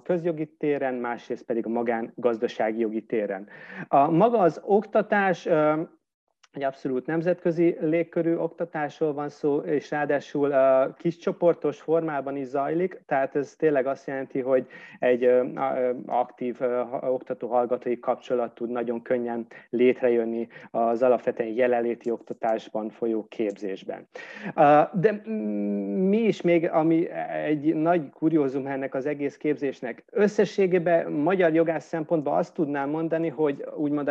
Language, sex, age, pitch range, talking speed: Hungarian, male, 30-49, 130-165 Hz, 120 wpm